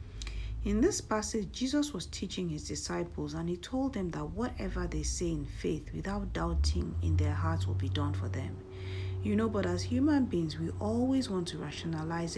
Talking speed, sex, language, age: 190 wpm, female, English, 50-69